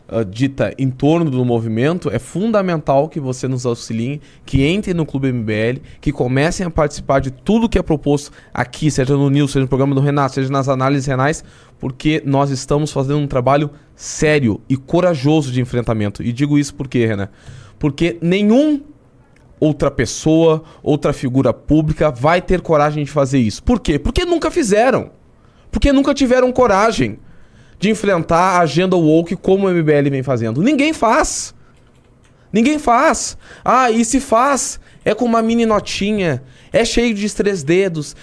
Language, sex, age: Portuguese, male, 20-39